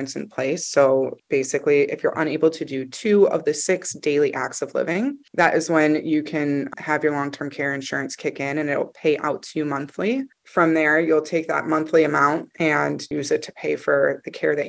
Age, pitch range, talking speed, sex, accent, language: 20-39, 145-170 Hz, 210 wpm, female, American, English